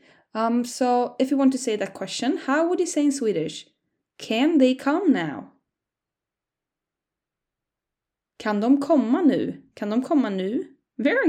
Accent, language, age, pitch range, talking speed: Norwegian, English, 20-39, 200-285 Hz, 140 wpm